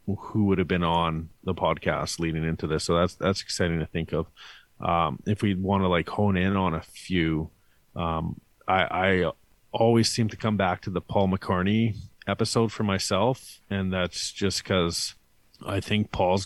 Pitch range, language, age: 85-105 Hz, English, 30-49